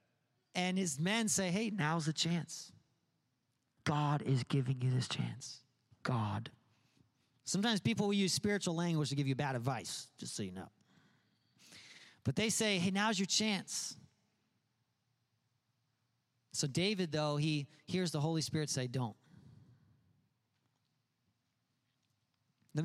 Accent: American